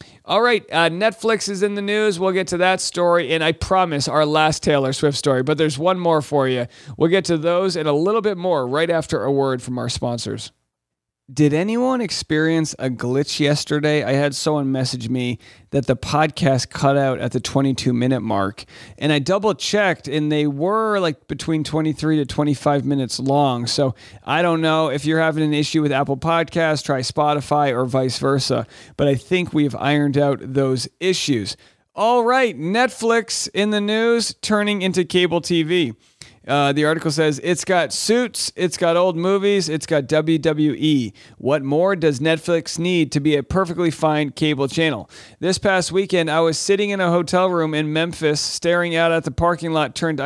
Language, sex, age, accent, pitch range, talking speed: English, male, 40-59, American, 145-185 Hz, 190 wpm